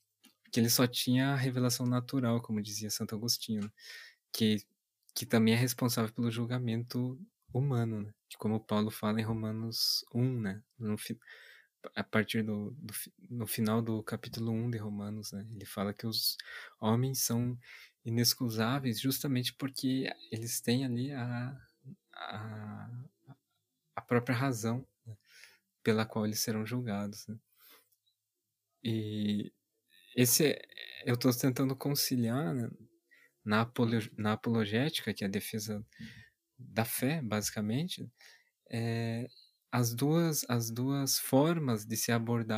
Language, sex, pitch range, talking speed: Portuguese, male, 110-125 Hz, 120 wpm